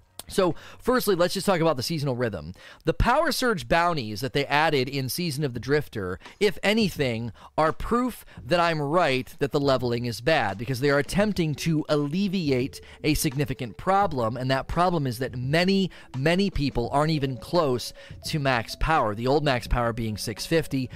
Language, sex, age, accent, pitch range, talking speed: English, male, 30-49, American, 125-170 Hz, 180 wpm